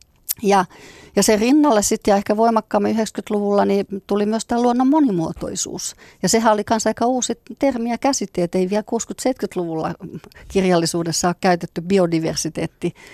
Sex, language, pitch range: female, Finnish, 175-210 Hz